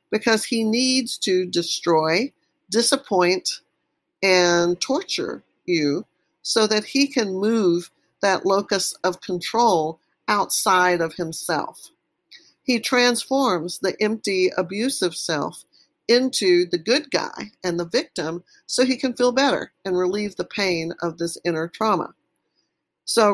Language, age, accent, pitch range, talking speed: English, 50-69, American, 180-255 Hz, 125 wpm